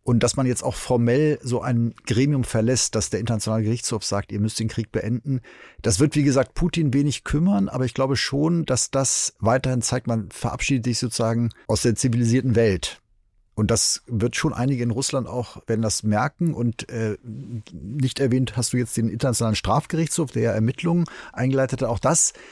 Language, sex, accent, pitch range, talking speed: German, male, German, 115-140 Hz, 190 wpm